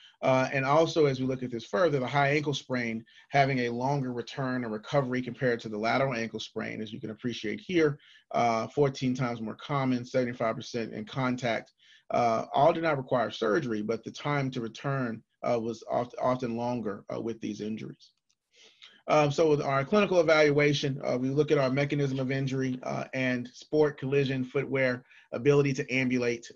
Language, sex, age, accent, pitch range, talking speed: English, male, 30-49, American, 115-135 Hz, 180 wpm